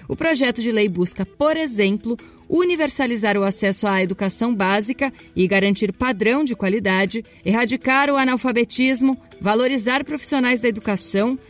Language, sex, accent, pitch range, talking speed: Portuguese, female, Brazilian, 195-265 Hz, 130 wpm